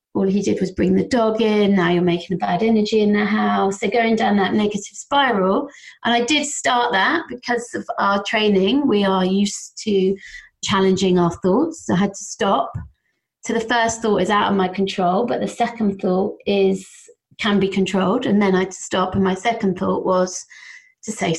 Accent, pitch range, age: British, 190-225 Hz, 30-49